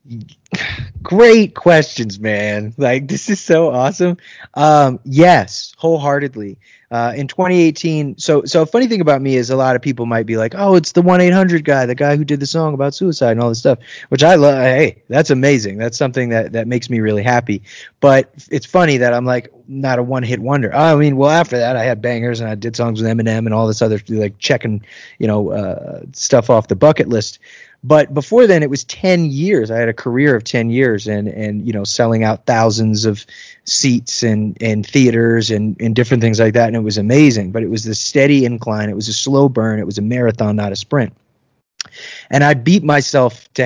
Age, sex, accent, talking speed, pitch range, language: 20-39, male, American, 215 wpm, 110-145 Hz, English